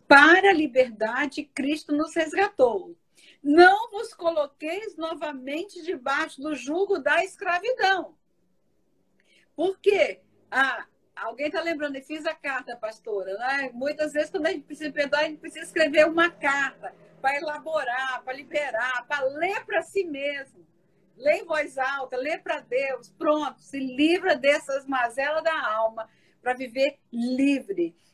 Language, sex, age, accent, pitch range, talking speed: Portuguese, female, 50-69, Brazilian, 270-335 Hz, 140 wpm